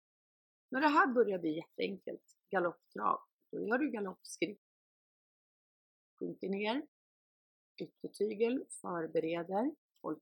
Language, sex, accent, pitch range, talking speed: Swedish, female, native, 180-230 Hz, 95 wpm